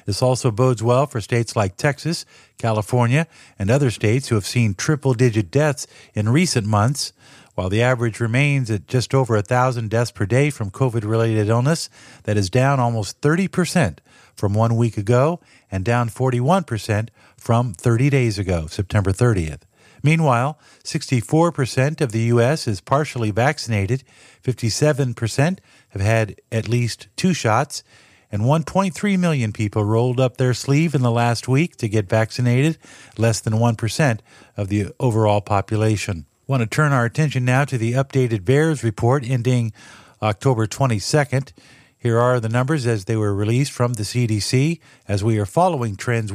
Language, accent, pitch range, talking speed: English, American, 110-140 Hz, 155 wpm